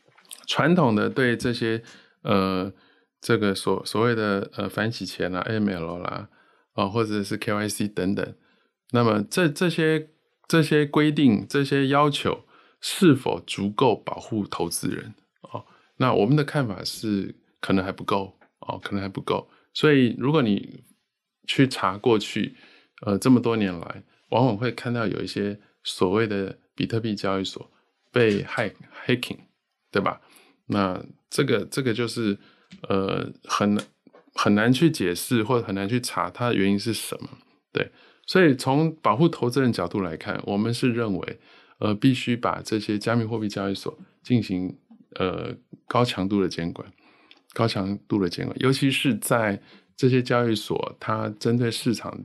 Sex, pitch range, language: male, 100-125 Hz, Chinese